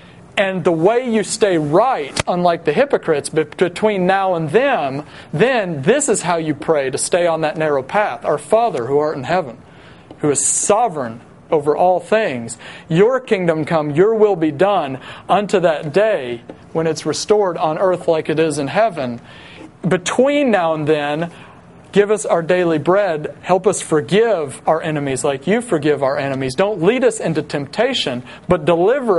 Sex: male